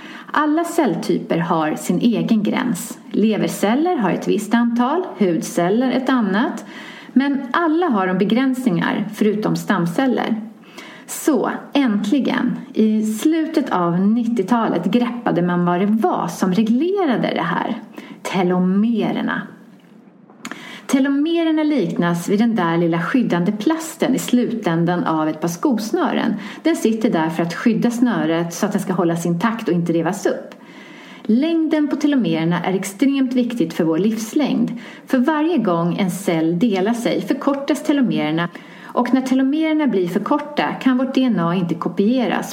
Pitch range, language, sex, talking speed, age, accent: 195-265 Hz, English, female, 135 wpm, 30-49, Swedish